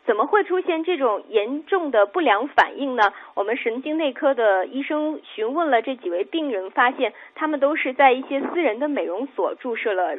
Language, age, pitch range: Chinese, 10-29, 250-365 Hz